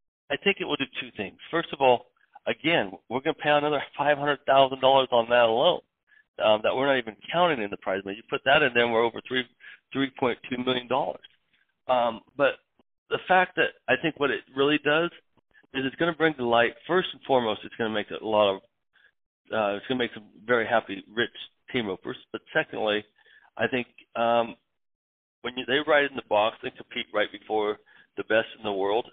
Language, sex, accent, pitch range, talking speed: English, male, American, 105-140 Hz, 225 wpm